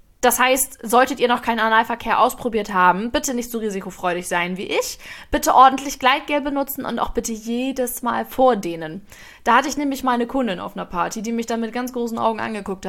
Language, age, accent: German, 20-39, German